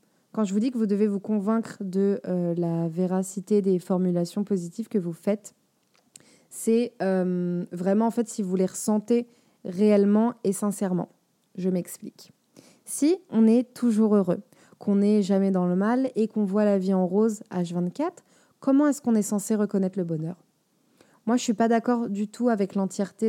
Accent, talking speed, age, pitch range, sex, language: French, 180 wpm, 20-39, 195-235 Hz, female, French